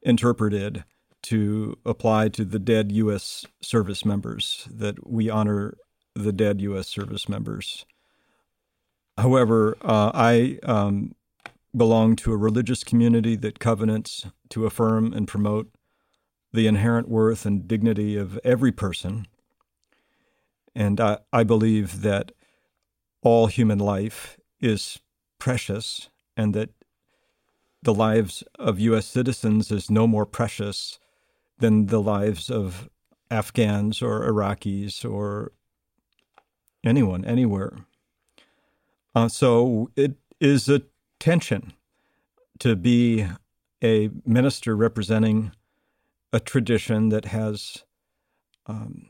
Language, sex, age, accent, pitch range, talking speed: English, male, 50-69, American, 105-115 Hz, 105 wpm